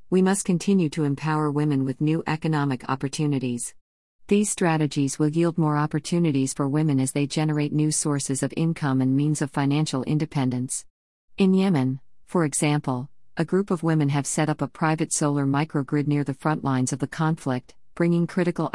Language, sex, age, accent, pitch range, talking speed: English, female, 50-69, American, 135-160 Hz, 175 wpm